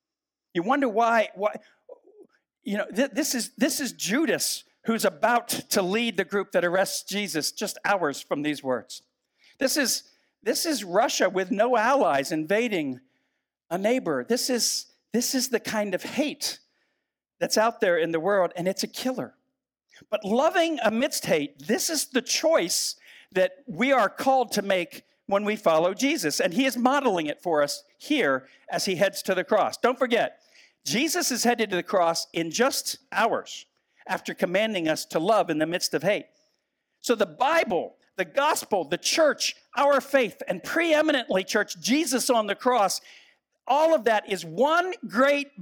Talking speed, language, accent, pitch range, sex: 170 wpm, English, American, 190-285 Hz, male